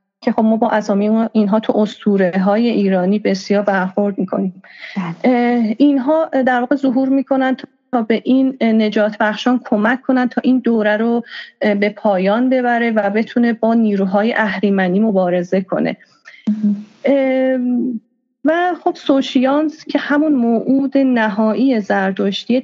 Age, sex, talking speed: 30-49, female, 130 wpm